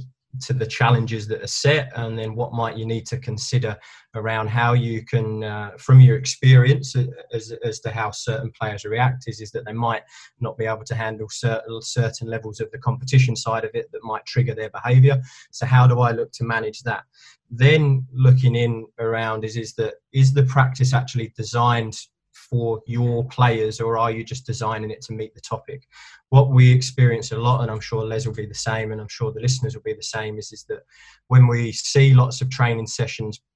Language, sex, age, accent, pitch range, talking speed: English, male, 20-39, British, 110-130 Hz, 210 wpm